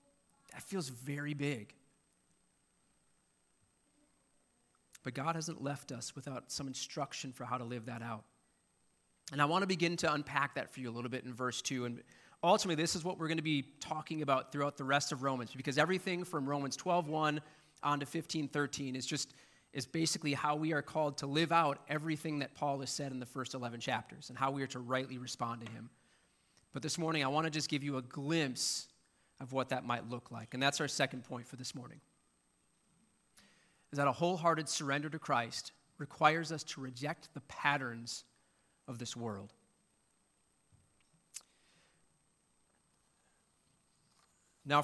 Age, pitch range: 30-49, 125-155 Hz